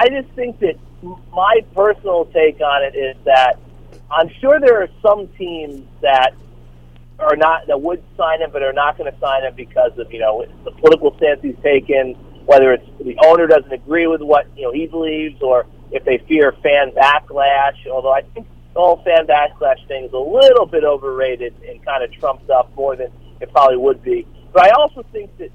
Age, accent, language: 40-59, American, English